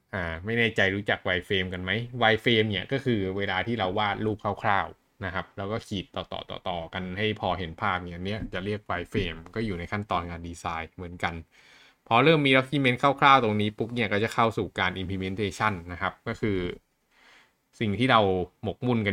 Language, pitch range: Thai, 95-115 Hz